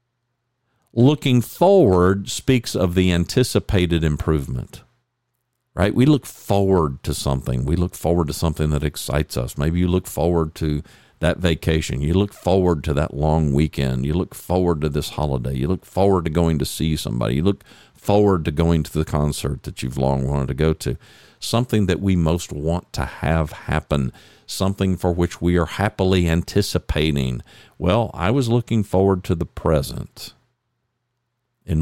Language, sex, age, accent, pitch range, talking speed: English, male, 50-69, American, 80-110 Hz, 165 wpm